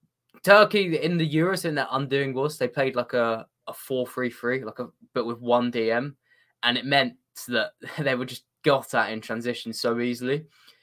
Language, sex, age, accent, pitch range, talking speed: English, male, 10-29, British, 125-160 Hz, 195 wpm